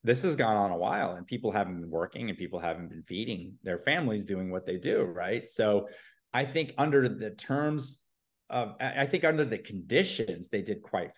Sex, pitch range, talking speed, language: male, 95-125 Hz, 205 wpm, English